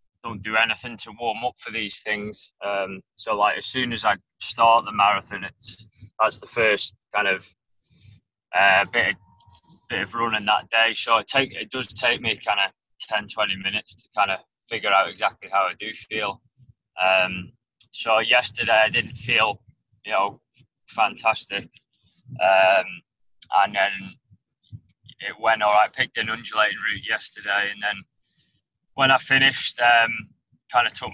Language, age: English, 20-39